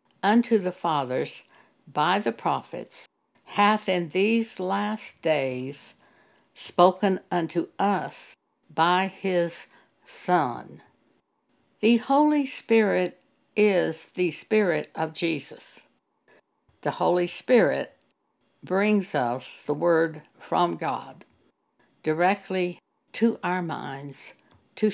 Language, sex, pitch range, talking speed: English, female, 160-215 Hz, 95 wpm